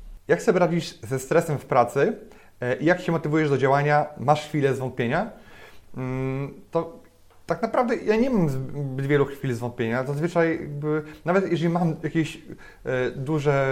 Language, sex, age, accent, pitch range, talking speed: Polish, male, 30-49, native, 135-170 Hz, 140 wpm